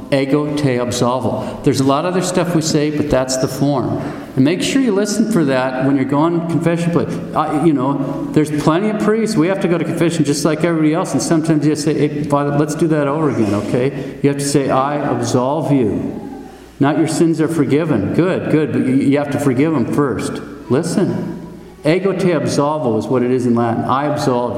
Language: English